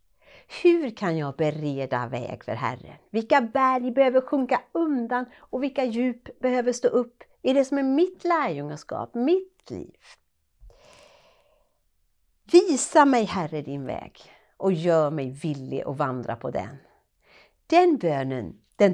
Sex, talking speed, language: female, 135 wpm, Swedish